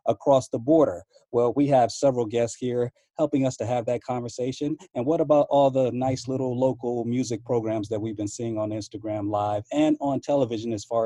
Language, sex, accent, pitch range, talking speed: English, male, American, 120-155 Hz, 200 wpm